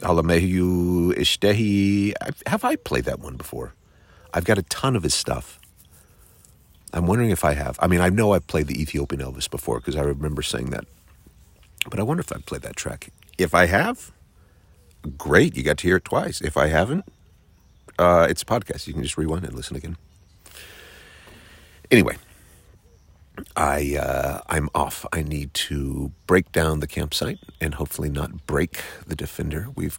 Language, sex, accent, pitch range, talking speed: English, male, American, 75-90 Hz, 170 wpm